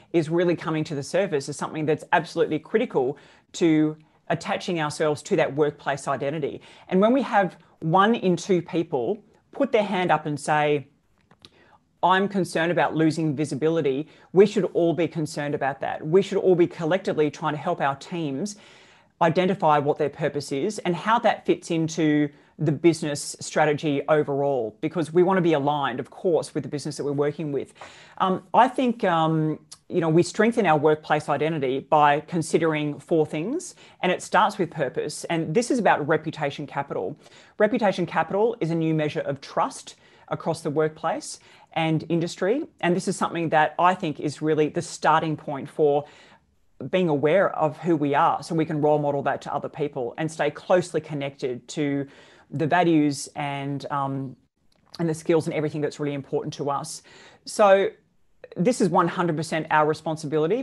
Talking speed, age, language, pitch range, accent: 175 wpm, 30-49, English, 150-175 Hz, Australian